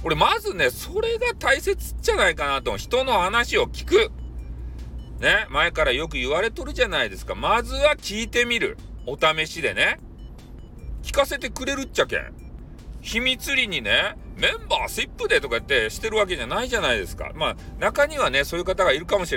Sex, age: male, 40-59